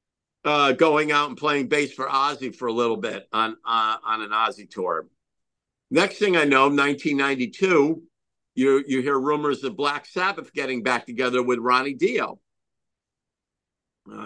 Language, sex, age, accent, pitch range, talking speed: English, male, 50-69, American, 135-175 Hz, 155 wpm